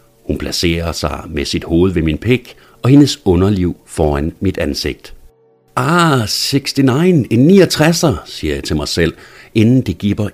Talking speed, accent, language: 155 wpm, native, Danish